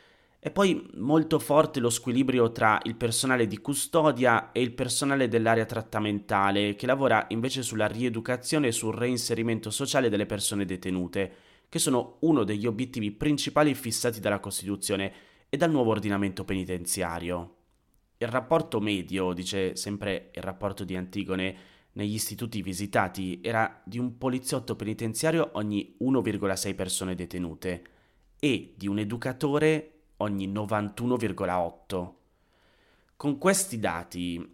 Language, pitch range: Italian, 95-125 Hz